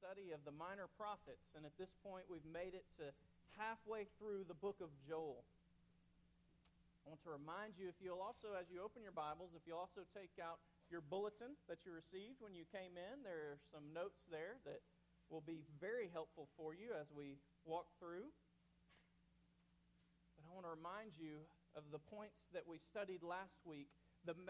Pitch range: 165-210 Hz